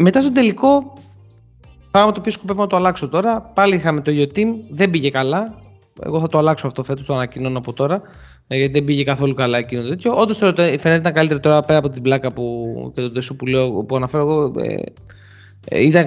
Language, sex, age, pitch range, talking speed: Greek, male, 20-39, 125-160 Hz, 200 wpm